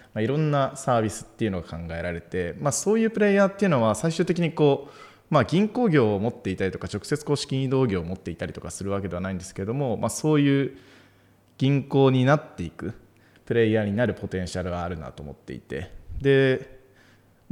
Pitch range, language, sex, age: 95-150 Hz, Japanese, male, 20-39